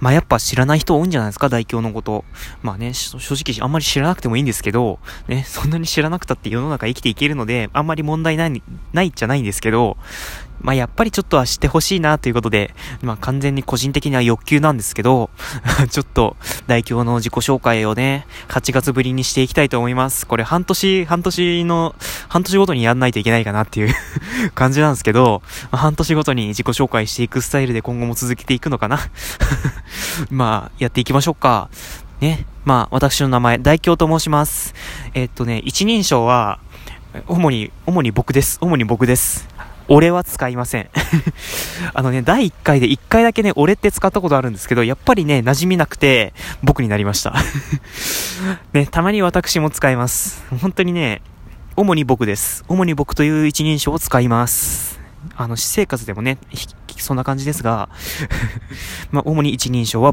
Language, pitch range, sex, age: Japanese, 115-150 Hz, male, 20-39